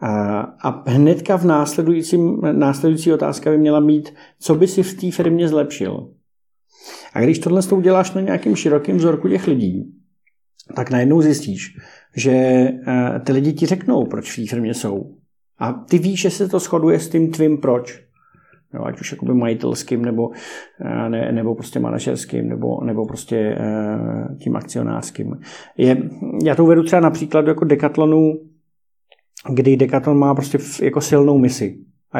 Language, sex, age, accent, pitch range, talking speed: Czech, male, 50-69, native, 115-150 Hz, 155 wpm